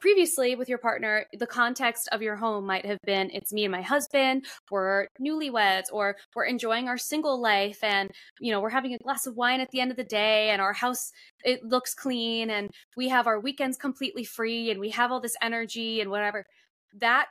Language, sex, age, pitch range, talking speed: English, female, 10-29, 200-250 Hz, 215 wpm